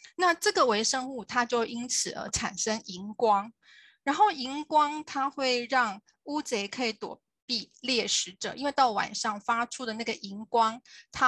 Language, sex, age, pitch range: Chinese, female, 20-39, 220-275 Hz